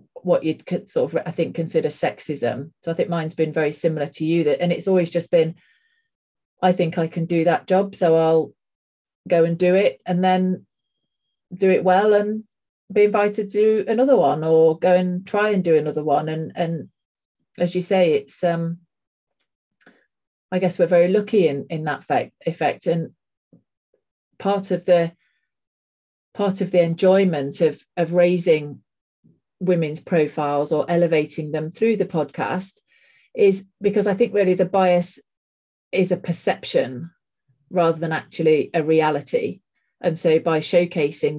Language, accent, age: English, British, 40-59